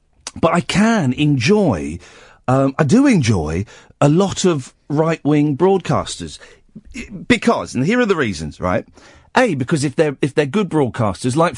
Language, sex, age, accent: English, male, 50-69, British